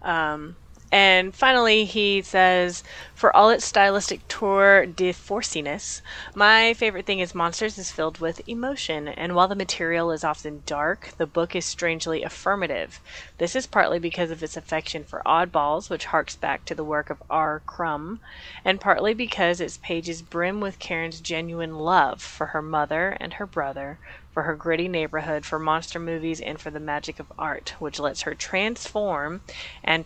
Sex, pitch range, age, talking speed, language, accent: female, 150-175 Hz, 20-39, 170 wpm, English, American